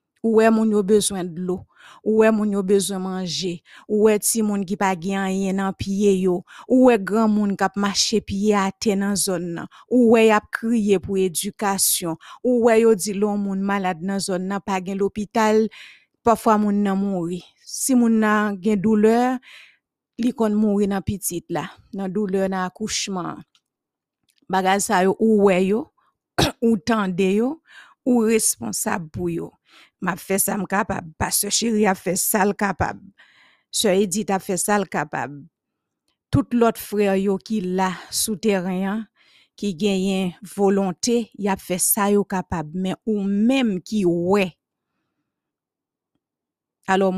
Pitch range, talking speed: 185-215 Hz, 150 wpm